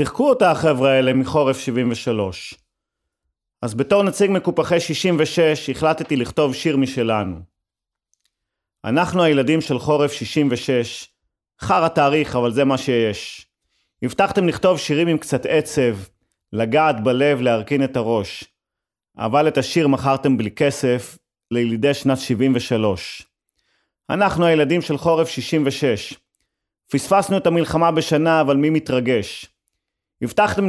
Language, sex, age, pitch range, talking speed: Hebrew, male, 30-49, 110-150 Hz, 120 wpm